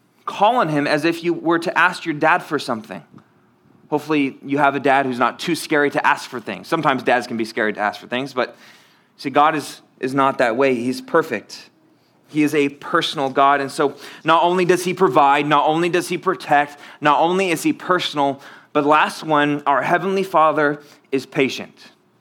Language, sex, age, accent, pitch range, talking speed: English, male, 20-39, American, 135-175 Hz, 205 wpm